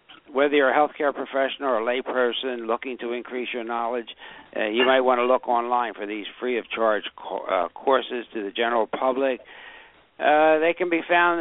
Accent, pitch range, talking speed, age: American, 125-150 Hz, 195 wpm, 60-79